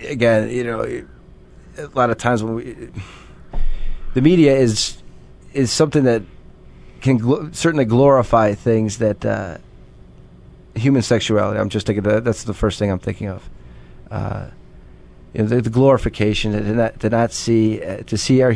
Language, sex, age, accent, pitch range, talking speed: English, male, 40-59, American, 95-120 Hz, 160 wpm